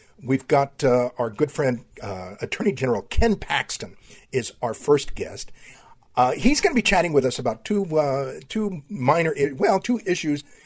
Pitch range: 125-155 Hz